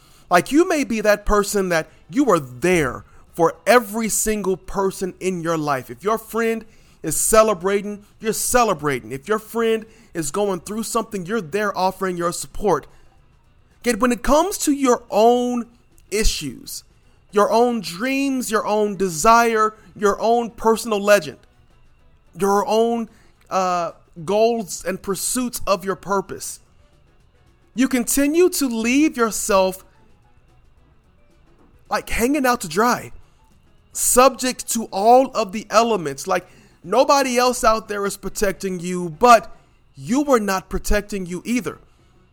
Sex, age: male, 40-59